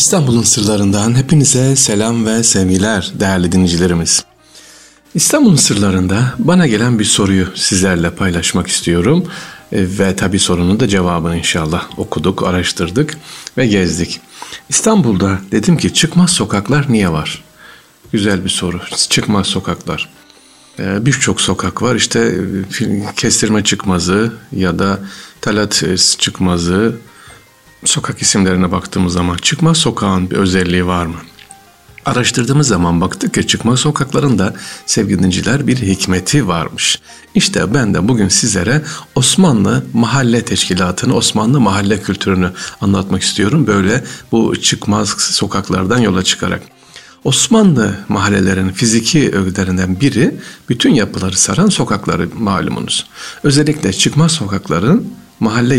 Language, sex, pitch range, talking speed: Turkish, male, 95-120 Hz, 110 wpm